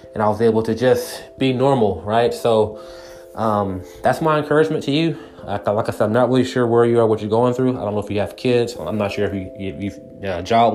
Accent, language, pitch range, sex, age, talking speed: American, English, 105-120 Hz, male, 20-39, 270 wpm